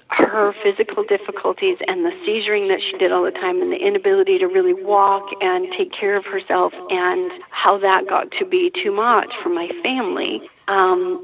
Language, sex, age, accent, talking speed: English, female, 40-59, American, 185 wpm